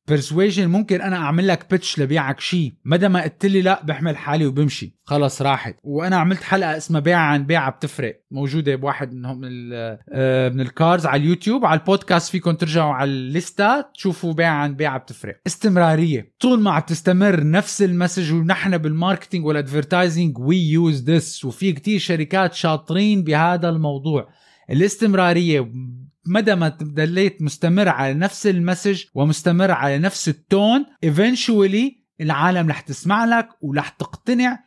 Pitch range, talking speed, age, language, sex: 150-195 Hz, 140 wpm, 20-39, Arabic, male